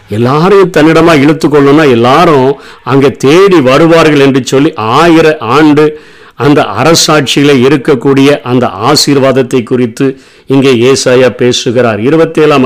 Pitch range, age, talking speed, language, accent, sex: 140-170 Hz, 50-69, 100 wpm, Tamil, native, male